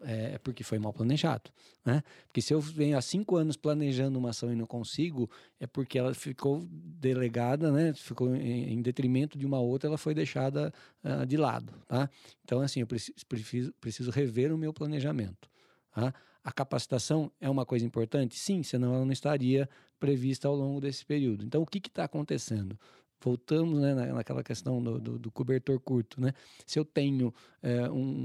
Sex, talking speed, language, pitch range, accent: male, 180 wpm, Portuguese, 120-150 Hz, Brazilian